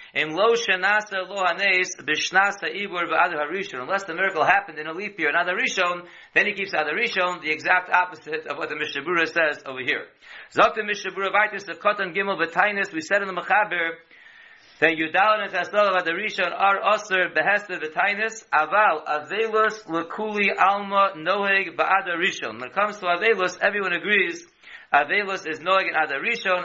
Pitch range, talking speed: 165-205 Hz, 85 wpm